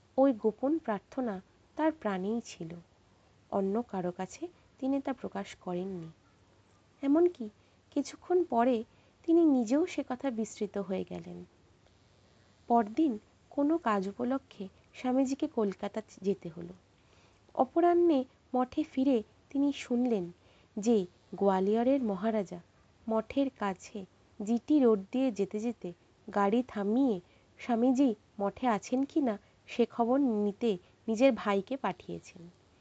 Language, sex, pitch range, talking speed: Bengali, female, 195-265 Hz, 70 wpm